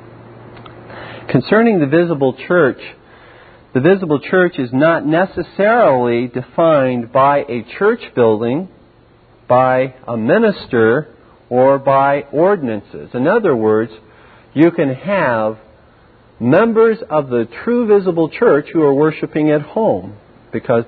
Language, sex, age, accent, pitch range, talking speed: English, male, 50-69, American, 120-160 Hz, 110 wpm